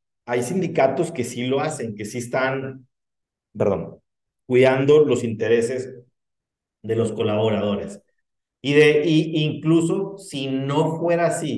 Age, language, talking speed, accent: 40-59, Spanish, 125 wpm, Mexican